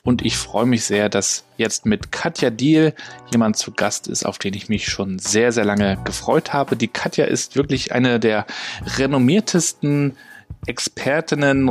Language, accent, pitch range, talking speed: German, German, 105-130 Hz, 165 wpm